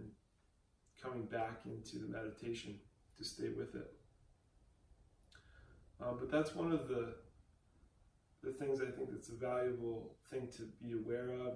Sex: male